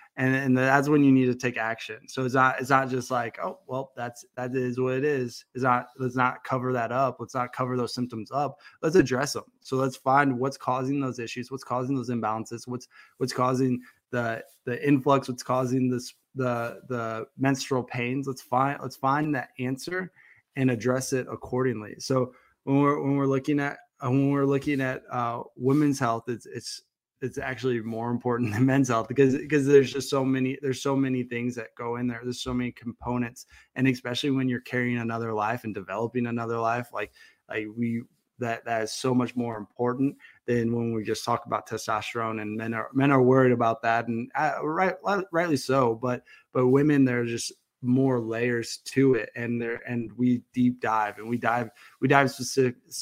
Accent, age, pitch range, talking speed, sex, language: American, 20-39, 120-135 Hz, 205 wpm, male, English